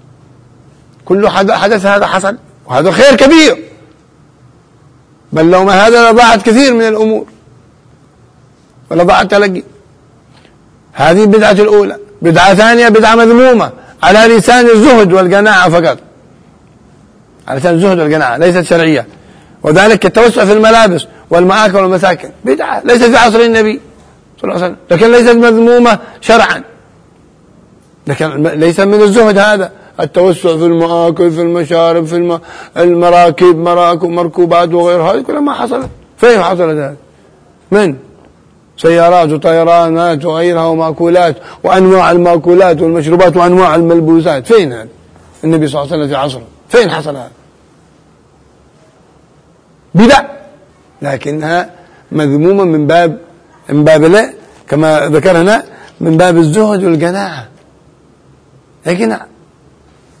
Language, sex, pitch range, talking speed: Arabic, male, 165-215 Hz, 115 wpm